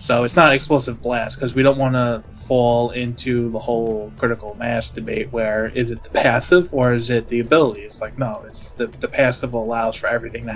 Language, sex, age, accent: English, male, 20-39, American